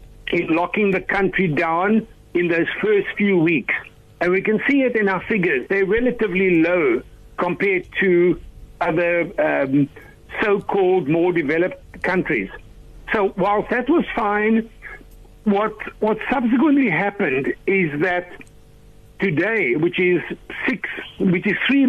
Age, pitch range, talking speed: 60-79, 175-215 Hz, 130 wpm